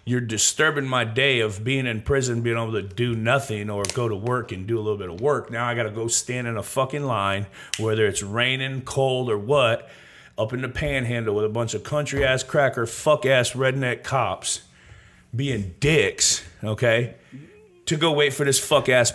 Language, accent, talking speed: English, American, 205 wpm